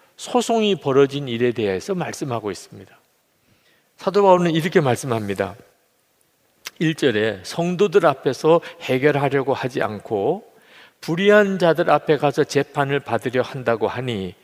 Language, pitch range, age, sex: Korean, 135-190 Hz, 50-69, male